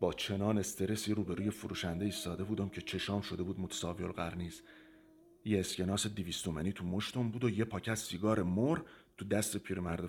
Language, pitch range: Persian, 95-125 Hz